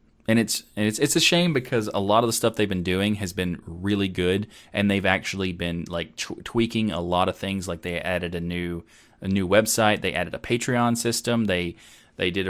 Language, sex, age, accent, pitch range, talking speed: English, male, 20-39, American, 90-115 Hz, 225 wpm